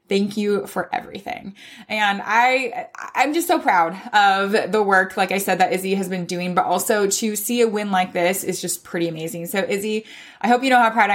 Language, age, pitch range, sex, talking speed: English, 20-39, 190-250 Hz, female, 225 wpm